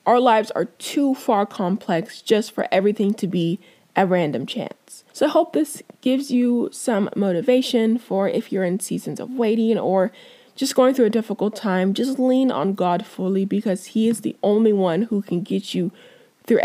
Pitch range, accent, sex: 190-255 Hz, American, female